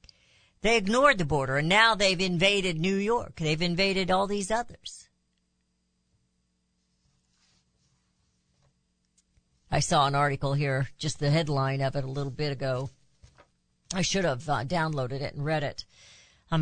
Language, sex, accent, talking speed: English, female, American, 140 wpm